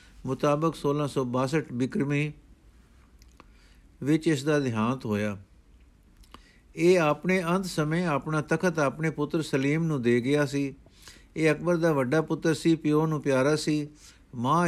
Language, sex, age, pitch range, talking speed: Punjabi, male, 60-79, 135-165 Hz, 130 wpm